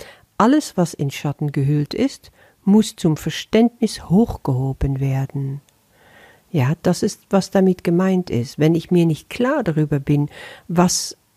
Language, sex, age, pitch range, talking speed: German, female, 50-69, 145-195 Hz, 135 wpm